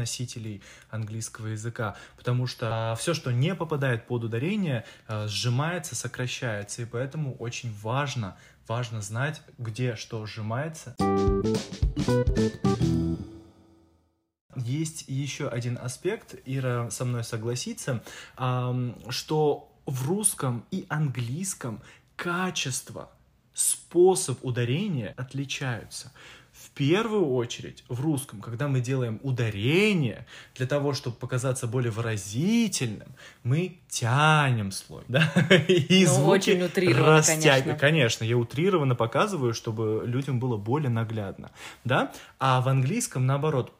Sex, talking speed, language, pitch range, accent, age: male, 100 wpm, Russian, 115-155 Hz, native, 20-39